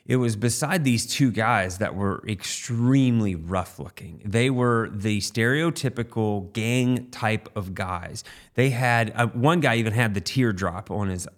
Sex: male